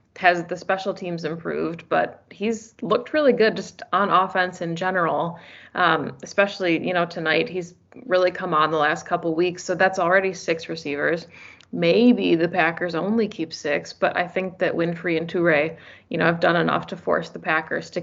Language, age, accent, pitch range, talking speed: English, 20-39, American, 165-190 Hz, 185 wpm